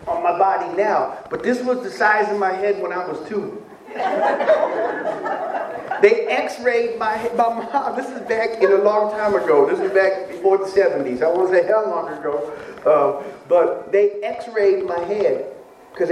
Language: English